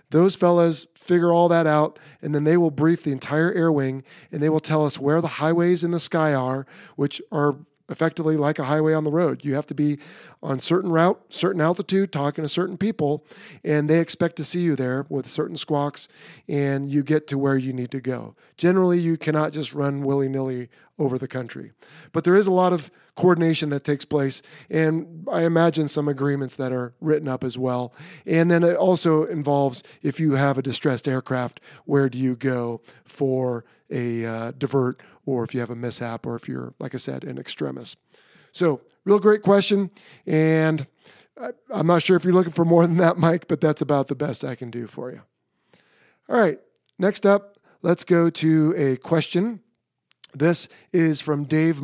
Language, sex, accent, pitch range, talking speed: English, male, American, 140-170 Hz, 195 wpm